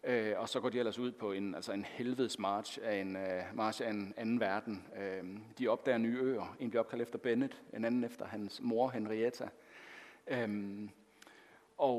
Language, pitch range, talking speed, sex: Danish, 105-125 Hz, 185 wpm, male